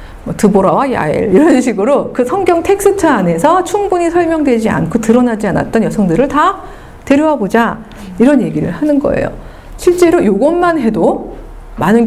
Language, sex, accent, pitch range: Korean, female, native, 195-280 Hz